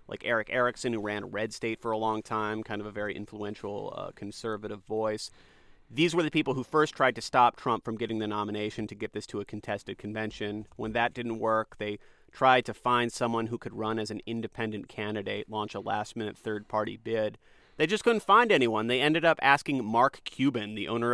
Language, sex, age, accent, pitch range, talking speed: English, male, 30-49, American, 110-135 Hz, 215 wpm